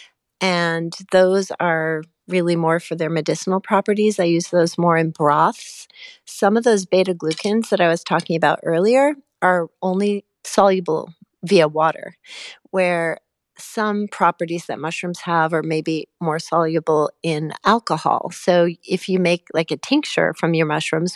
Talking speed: 150 wpm